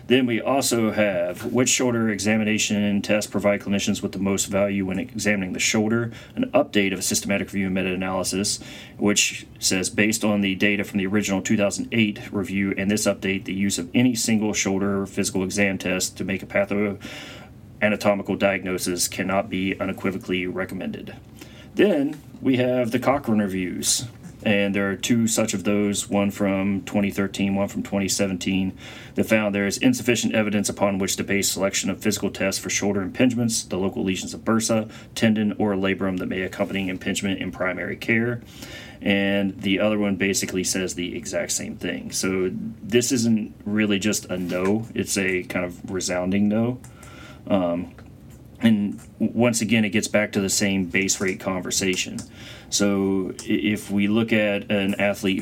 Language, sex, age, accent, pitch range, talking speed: English, male, 30-49, American, 95-110 Hz, 165 wpm